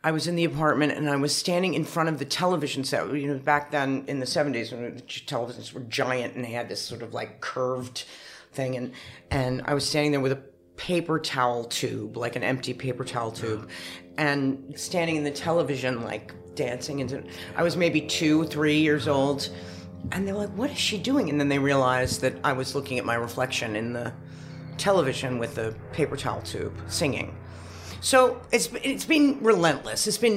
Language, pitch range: English, 125-150 Hz